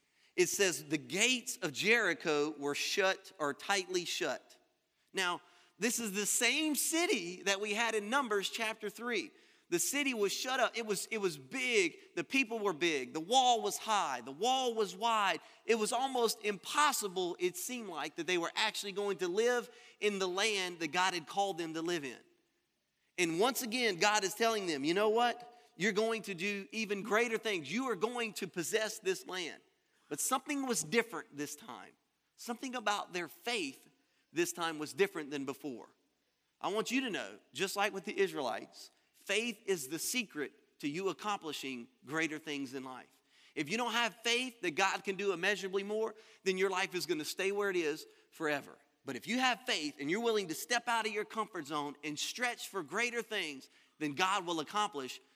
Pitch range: 175-240 Hz